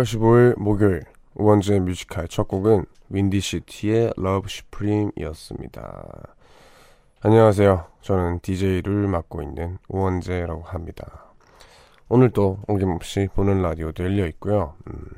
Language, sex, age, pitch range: Korean, male, 20-39, 85-105 Hz